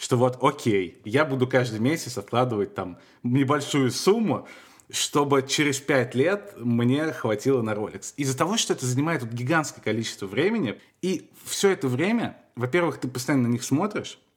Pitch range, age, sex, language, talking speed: 105-135 Hz, 20-39, male, Russian, 155 wpm